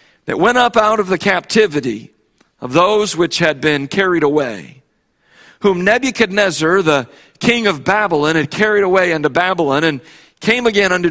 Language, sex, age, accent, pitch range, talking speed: English, male, 50-69, American, 155-210 Hz, 155 wpm